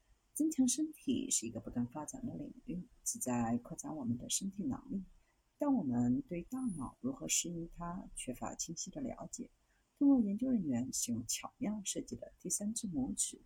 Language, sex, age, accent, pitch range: Chinese, female, 50-69, native, 170-260 Hz